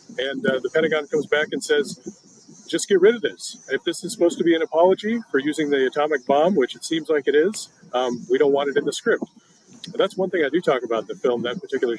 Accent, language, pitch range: American, English, 140-230 Hz